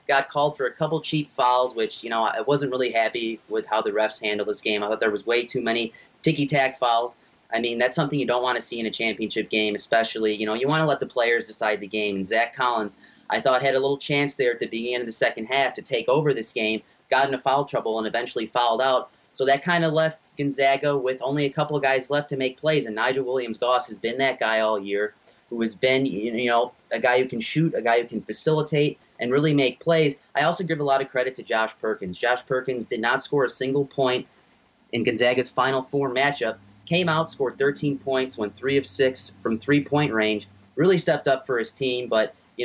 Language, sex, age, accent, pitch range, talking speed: English, male, 30-49, American, 115-140 Hz, 240 wpm